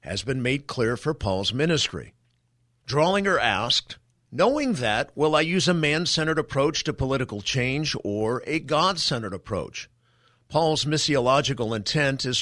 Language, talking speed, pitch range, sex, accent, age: English, 135 wpm, 120-155 Hz, male, American, 50-69